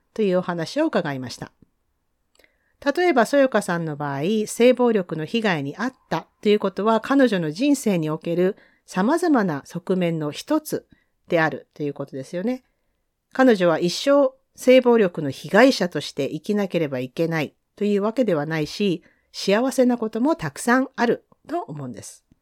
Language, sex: Japanese, female